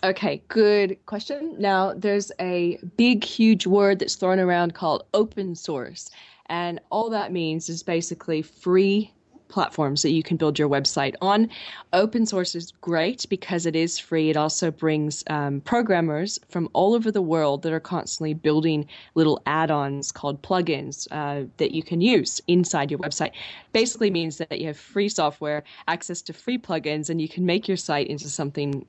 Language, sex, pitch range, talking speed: English, female, 155-195 Hz, 170 wpm